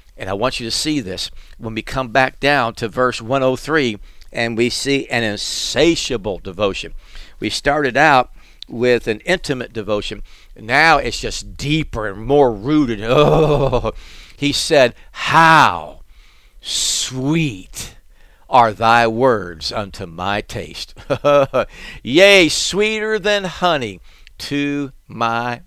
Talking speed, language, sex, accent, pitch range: 120 wpm, English, male, American, 110-150 Hz